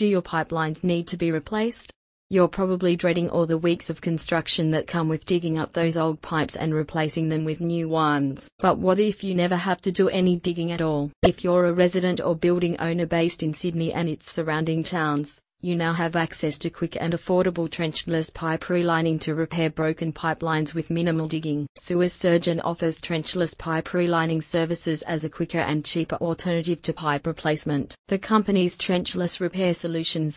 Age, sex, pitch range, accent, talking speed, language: 30-49, female, 155-175 Hz, Australian, 185 wpm, English